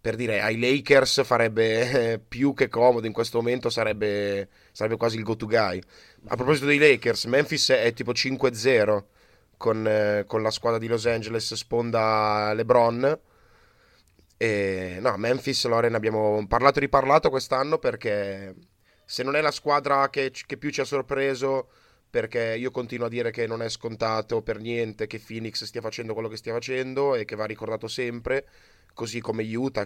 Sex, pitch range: male, 110-135 Hz